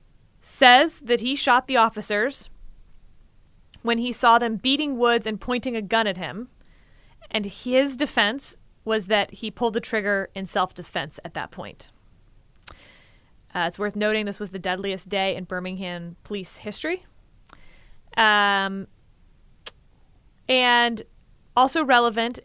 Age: 20-39